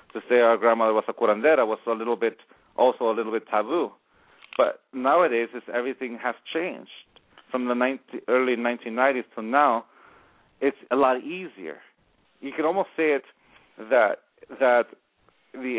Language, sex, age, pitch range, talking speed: English, male, 40-59, 120-140 Hz, 160 wpm